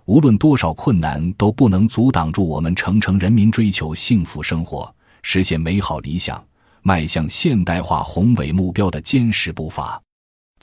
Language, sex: Chinese, male